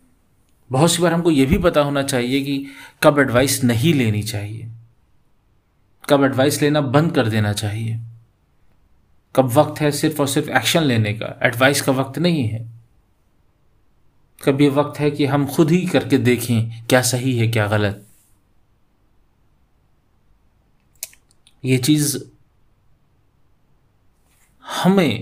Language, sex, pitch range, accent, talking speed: Hindi, male, 115-150 Hz, native, 125 wpm